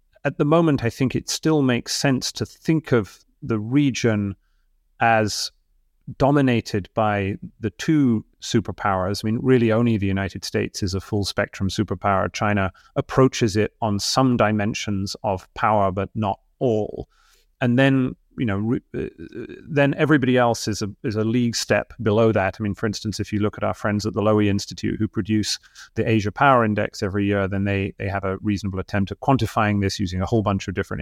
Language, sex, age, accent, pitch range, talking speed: English, male, 30-49, British, 100-115 Hz, 190 wpm